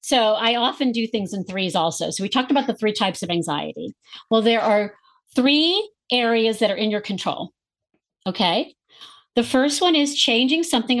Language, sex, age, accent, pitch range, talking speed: English, female, 50-69, American, 195-255 Hz, 185 wpm